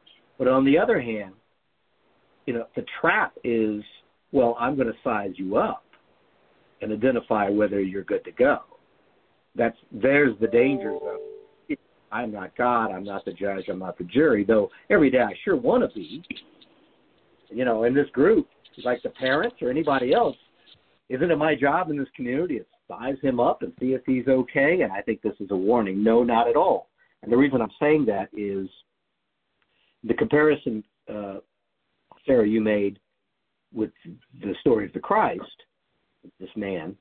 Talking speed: 175 wpm